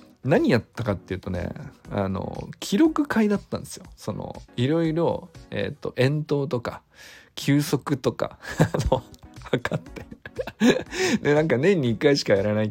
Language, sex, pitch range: Japanese, male, 105-145 Hz